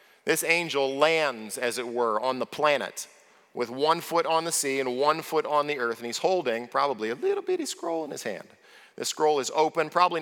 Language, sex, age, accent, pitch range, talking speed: English, male, 40-59, American, 130-165 Hz, 215 wpm